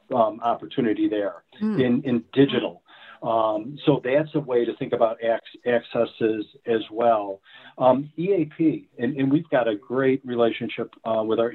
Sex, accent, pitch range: male, American, 115-145 Hz